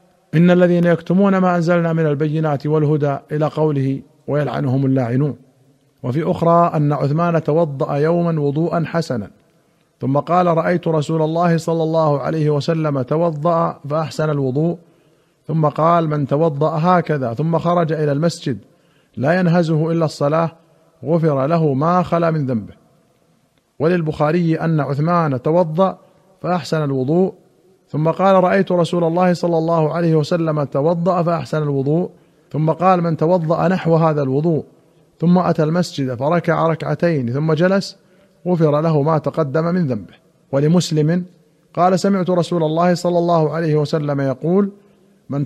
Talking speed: 130 wpm